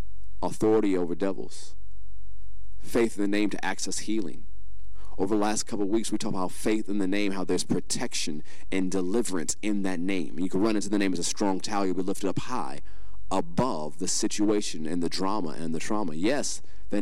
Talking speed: 200 wpm